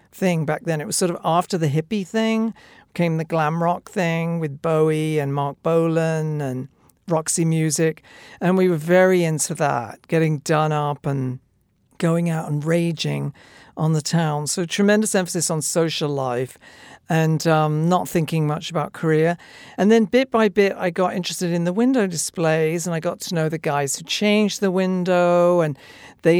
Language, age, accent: English, 50-69, British